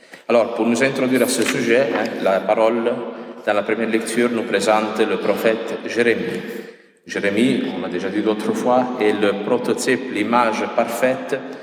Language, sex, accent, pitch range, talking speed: French, male, Italian, 110-135 Hz, 160 wpm